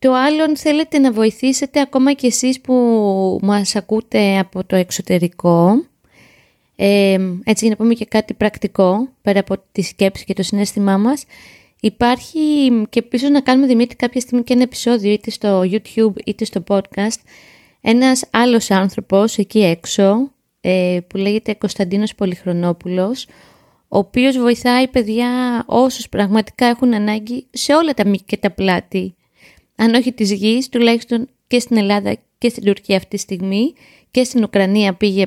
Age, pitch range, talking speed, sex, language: 20-39, 200-250 Hz, 150 wpm, female, Greek